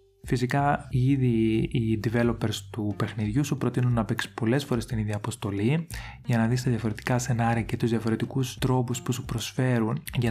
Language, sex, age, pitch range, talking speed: Greek, male, 20-39, 110-120 Hz, 170 wpm